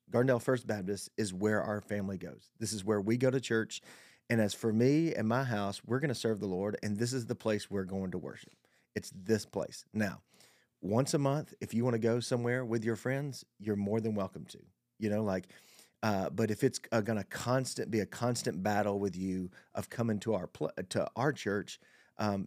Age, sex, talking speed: 40-59, male, 225 wpm